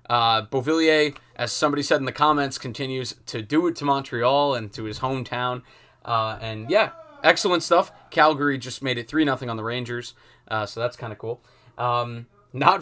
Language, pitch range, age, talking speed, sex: English, 120-150 Hz, 20-39, 185 wpm, male